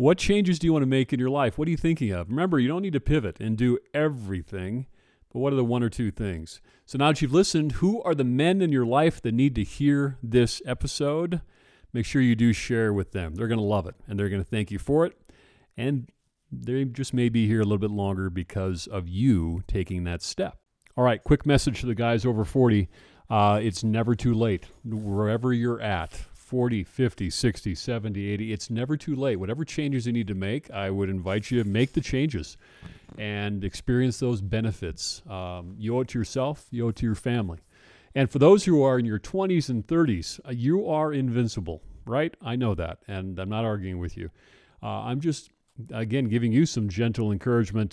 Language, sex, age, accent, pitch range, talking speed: English, male, 40-59, American, 105-135 Hz, 220 wpm